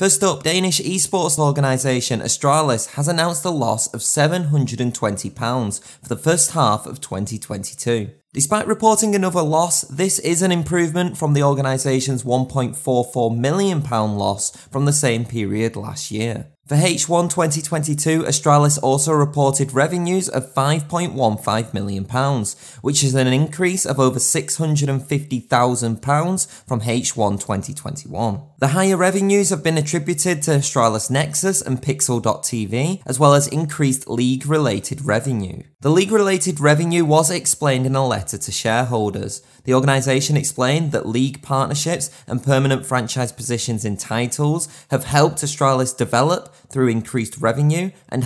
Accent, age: British, 20-39